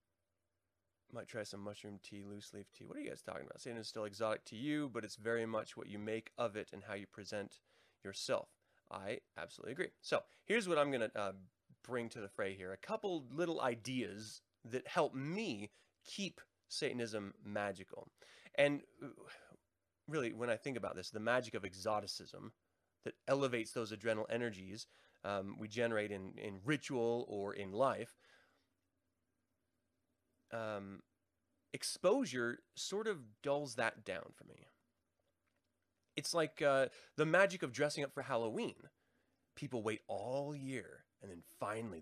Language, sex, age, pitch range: English, male, 20-39, 100-155 Hz